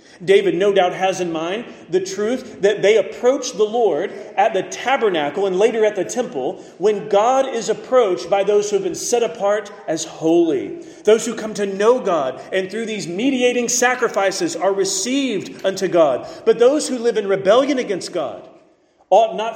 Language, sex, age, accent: English, male, 40-59, American